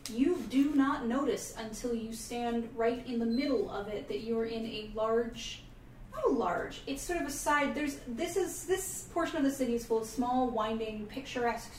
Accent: American